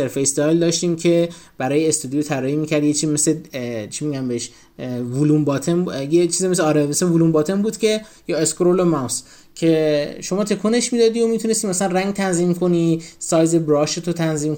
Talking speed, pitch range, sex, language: 175 wpm, 145-180 Hz, male, Persian